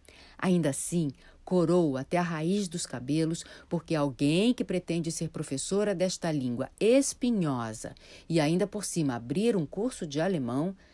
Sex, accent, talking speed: female, Brazilian, 145 wpm